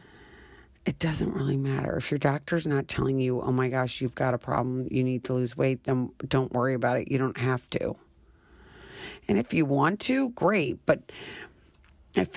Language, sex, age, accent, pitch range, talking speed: English, female, 40-59, American, 125-145 Hz, 190 wpm